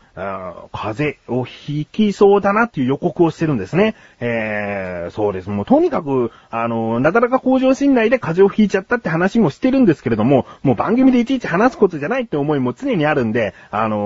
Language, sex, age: Japanese, male, 30-49